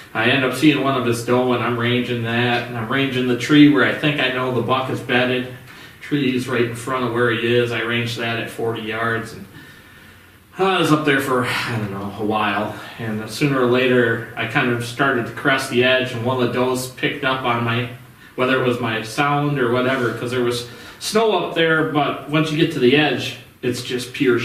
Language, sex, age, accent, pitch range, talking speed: English, male, 30-49, American, 115-135 Hz, 235 wpm